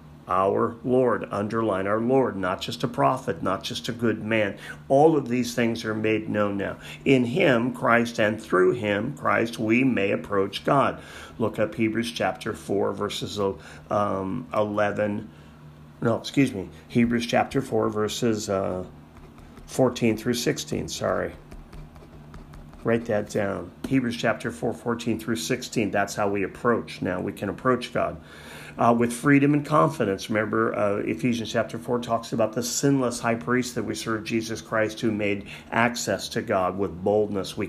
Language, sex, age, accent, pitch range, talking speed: English, male, 40-59, American, 100-125 Hz, 155 wpm